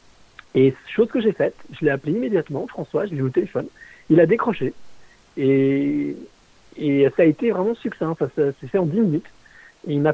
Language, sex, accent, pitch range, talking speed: French, male, French, 135-170 Hz, 215 wpm